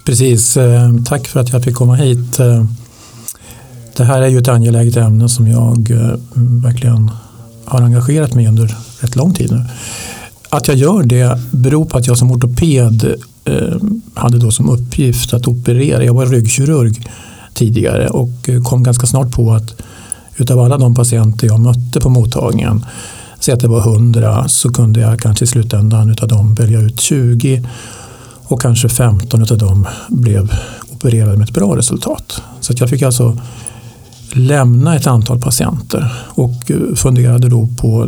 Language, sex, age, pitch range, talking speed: English, male, 50-69, 115-125 Hz, 160 wpm